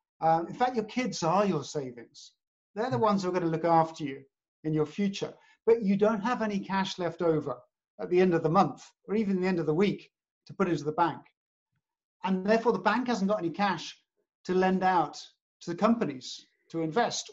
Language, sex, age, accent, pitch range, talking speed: English, male, 50-69, British, 165-225 Hz, 220 wpm